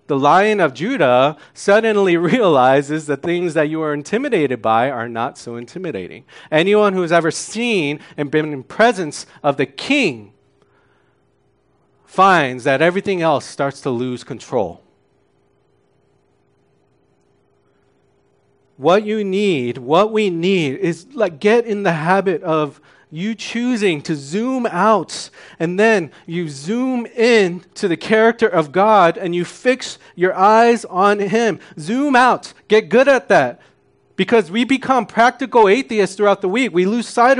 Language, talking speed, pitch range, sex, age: English, 145 wpm, 160-225 Hz, male, 40-59